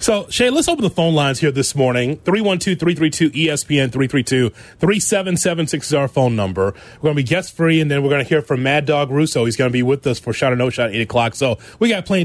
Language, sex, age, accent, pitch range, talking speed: English, male, 30-49, American, 125-175 Hz, 240 wpm